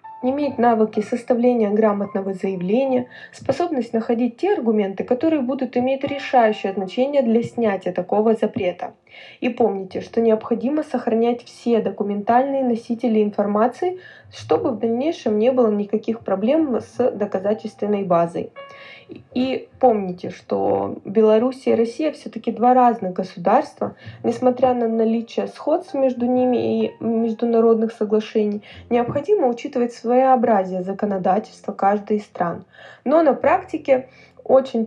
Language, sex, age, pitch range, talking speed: Russian, female, 20-39, 215-255 Hz, 115 wpm